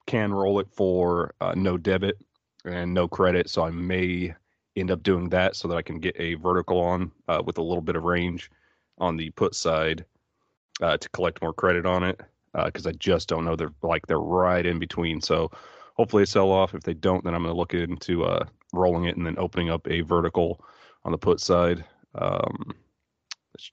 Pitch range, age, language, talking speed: 85-95 Hz, 30-49, English, 210 wpm